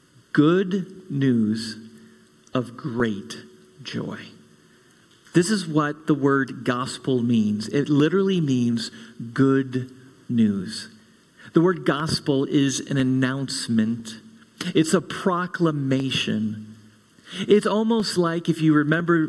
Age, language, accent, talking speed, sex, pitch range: 50-69, English, American, 100 wpm, male, 130-185 Hz